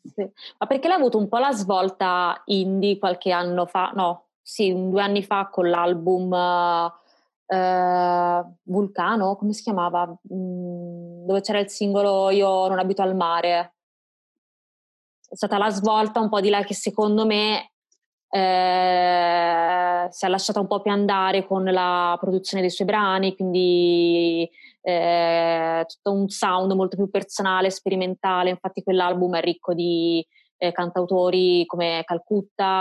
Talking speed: 145 wpm